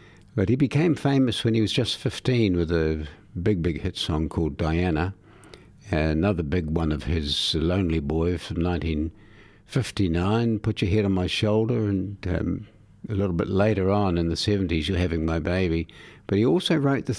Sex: male